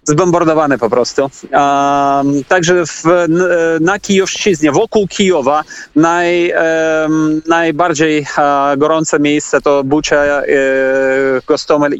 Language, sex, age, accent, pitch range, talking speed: Polish, male, 30-49, native, 145-175 Hz, 80 wpm